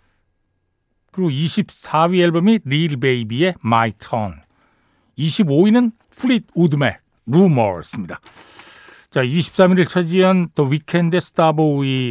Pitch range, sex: 120-185 Hz, male